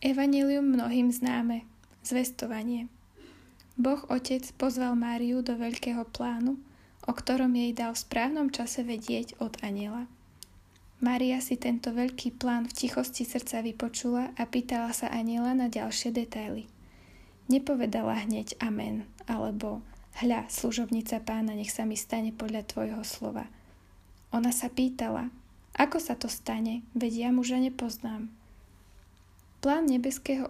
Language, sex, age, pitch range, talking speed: Slovak, female, 20-39, 225-255 Hz, 125 wpm